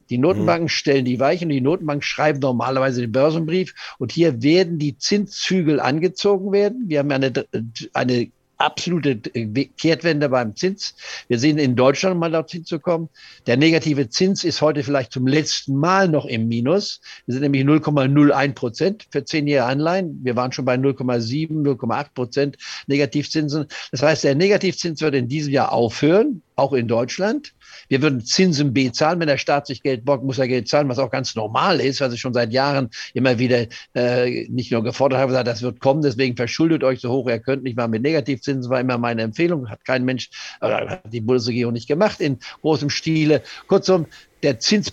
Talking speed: 185 wpm